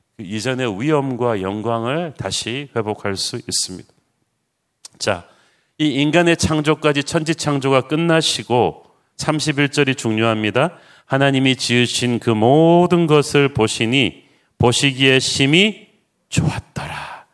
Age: 40-59